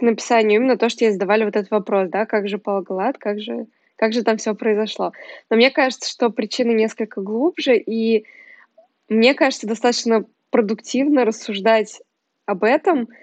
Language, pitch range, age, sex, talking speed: Russian, 215-245 Hz, 20-39, female, 160 wpm